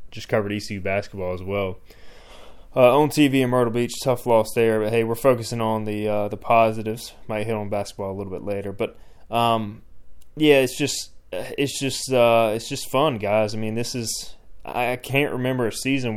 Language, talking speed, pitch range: English, 195 wpm, 100-120 Hz